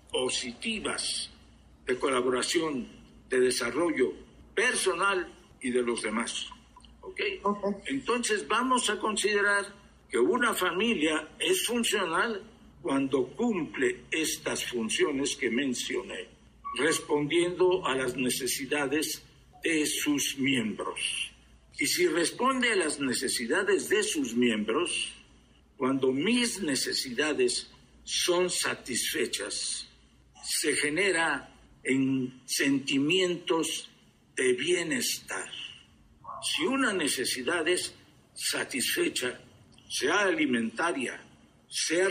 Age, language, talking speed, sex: 60-79, Spanish, 85 wpm, male